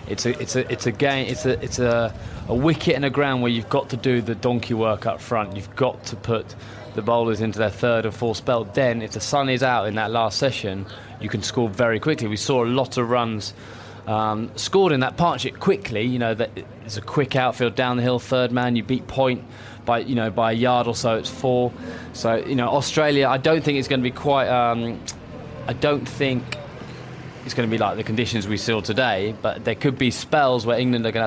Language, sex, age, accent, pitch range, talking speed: English, male, 20-39, British, 110-130 Hz, 240 wpm